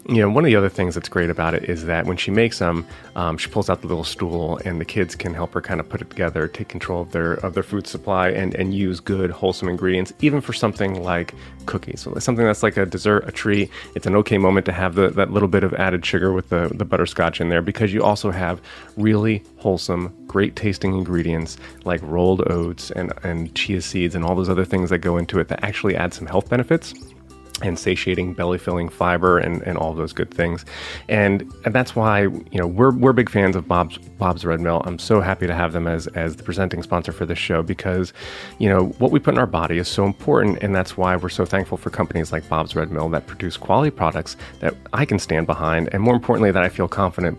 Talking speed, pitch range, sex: 245 wpm, 85-100 Hz, male